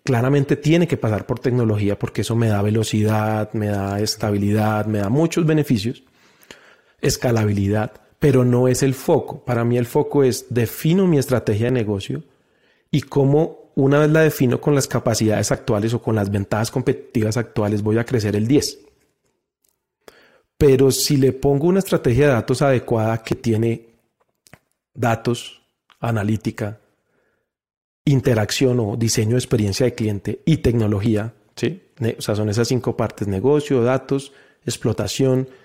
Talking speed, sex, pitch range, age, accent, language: 145 wpm, male, 110-140 Hz, 40-59, Colombian, Spanish